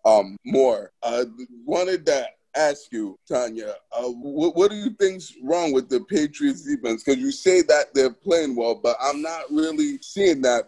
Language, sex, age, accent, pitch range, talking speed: English, male, 20-39, American, 120-170 Hz, 170 wpm